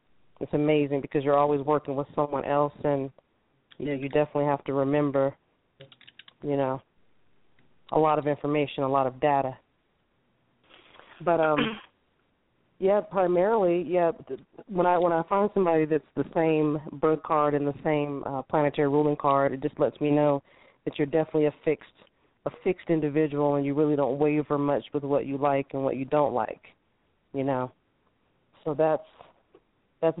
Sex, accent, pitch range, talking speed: female, American, 145-165 Hz, 165 wpm